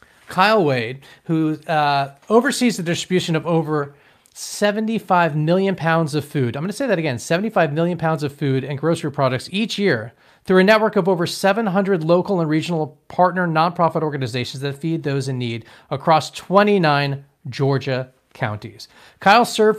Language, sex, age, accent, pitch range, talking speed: English, male, 40-59, American, 140-185 Hz, 160 wpm